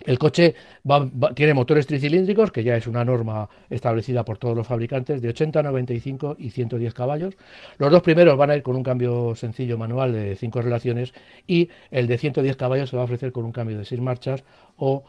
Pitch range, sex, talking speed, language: 115-140 Hz, male, 210 wpm, Spanish